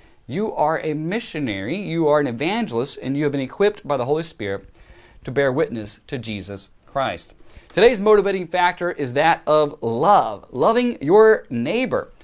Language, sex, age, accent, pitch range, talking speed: English, male, 30-49, American, 125-195 Hz, 160 wpm